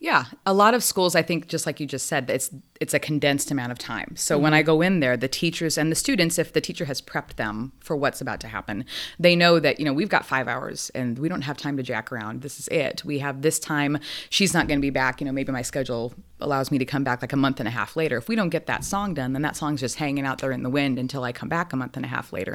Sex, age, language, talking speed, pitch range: female, 20-39, English, 305 wpm, 130-155 Hz